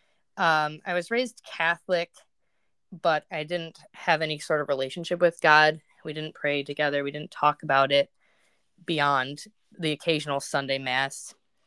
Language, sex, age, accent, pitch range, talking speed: English, female, 20-39, American, 150-175 Hz, 150 wpm